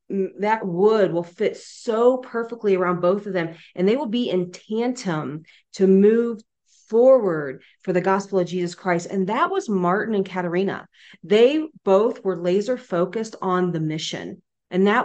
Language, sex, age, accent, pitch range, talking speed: English, female, 30-49, American, 170-210 Hz, 165 wpm